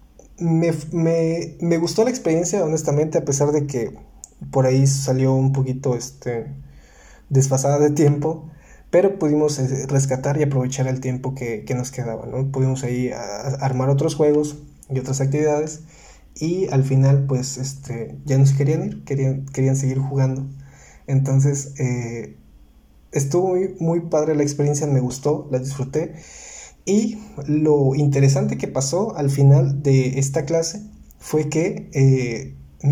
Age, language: 20-39, Spanish